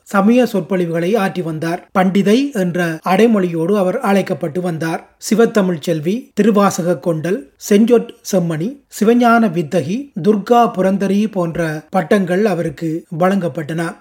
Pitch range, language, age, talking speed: 175-220 Hz, Tamil, 30-49, 105 wpm